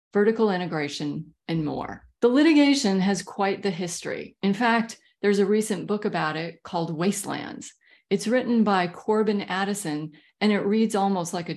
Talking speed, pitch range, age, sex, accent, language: 160 wpm, 175-220 Hz, 40-59, female, American, English